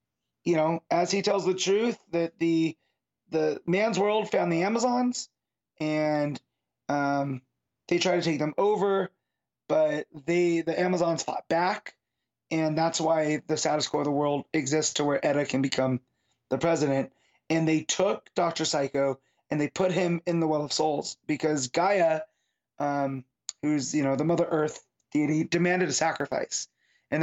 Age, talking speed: 30-49, 165 wpm